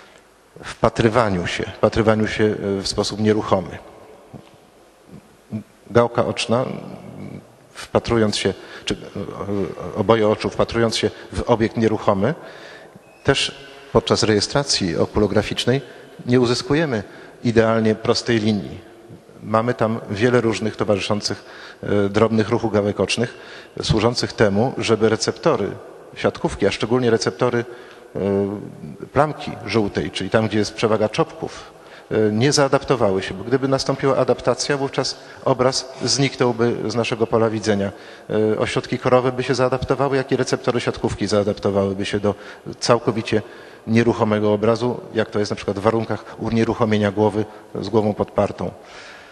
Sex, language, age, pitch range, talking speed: male, Polish, 40-59, 105-125 Hz, 115 wpm